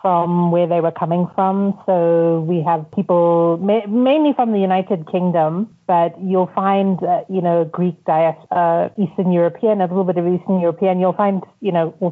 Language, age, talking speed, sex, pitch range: English, 30-49, 180 wpm, female, 170-195 Hz